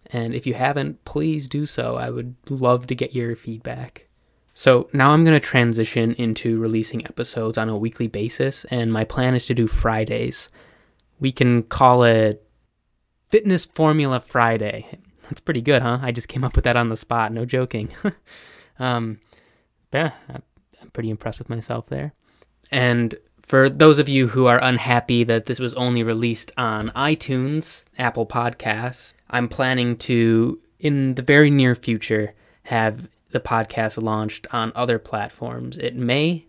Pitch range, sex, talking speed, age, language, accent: 110-130 Hz, male, 160 wpm, 20-39, English, American